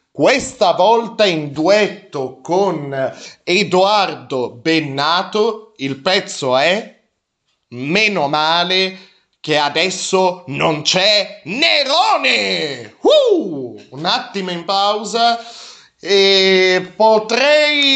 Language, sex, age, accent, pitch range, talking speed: Italian, male, 30-49, native, 145-200 Hz, 75 wpm